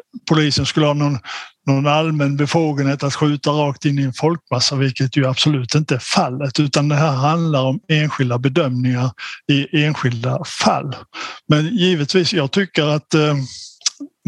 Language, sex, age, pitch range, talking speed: English, male, 60-79, 135-155 Hz, 150 wpm